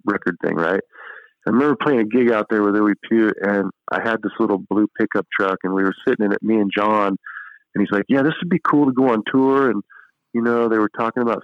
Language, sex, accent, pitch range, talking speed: English, male, American, 100-125 Hz, 255 wpm